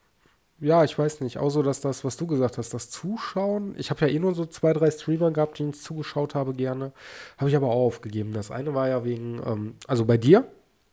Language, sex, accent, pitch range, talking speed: German, male, German, 125-160 Hz, 230 wpm